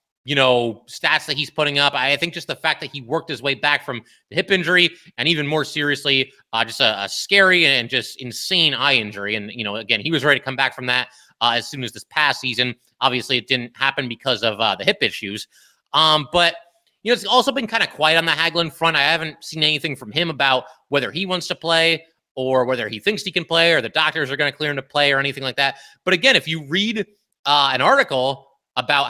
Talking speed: 250 wpm